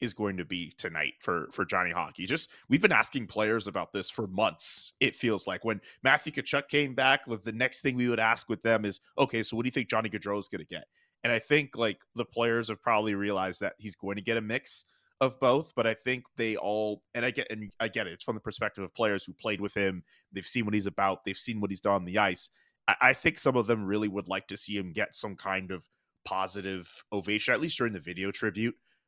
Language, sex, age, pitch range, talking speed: English, male, 30-49, 95-115 Hz, 250 wpm